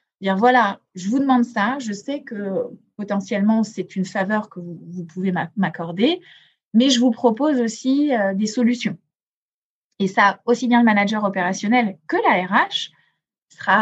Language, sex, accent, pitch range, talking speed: French, female, French, 190-240 Hz, 155 wpm